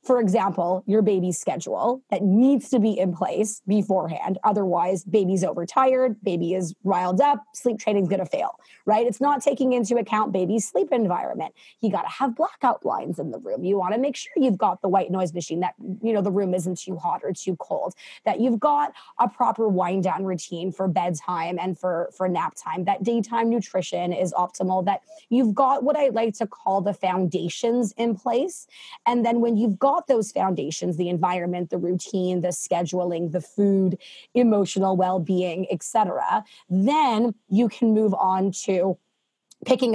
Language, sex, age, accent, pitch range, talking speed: English, female, 20-39, American, 185-235 Hz, 180 wpm